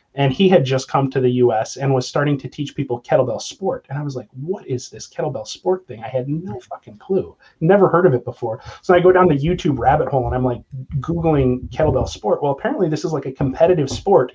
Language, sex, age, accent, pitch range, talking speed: English, male, 30-49, American, 130-165 Hz, 245 wpm